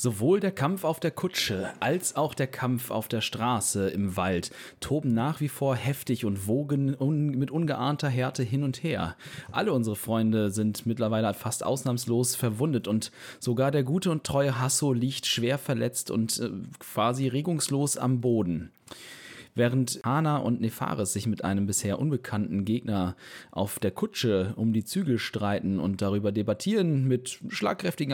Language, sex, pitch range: German, male, 110-135 Hz